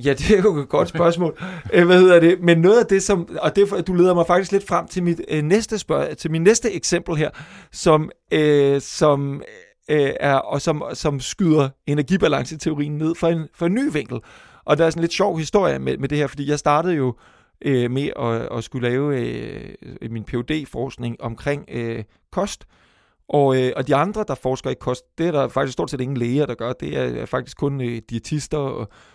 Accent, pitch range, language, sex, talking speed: native, 125-165 Hz, Danish, male, 210 wpm